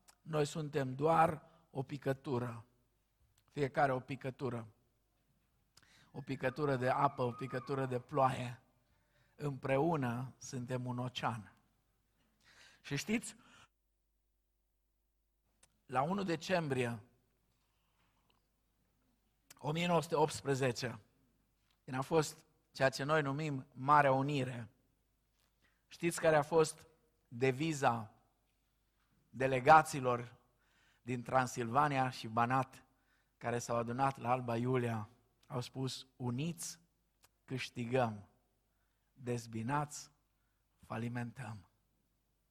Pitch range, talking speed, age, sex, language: 115-140 Hz, 80 wpm, 50-69, male, Romanian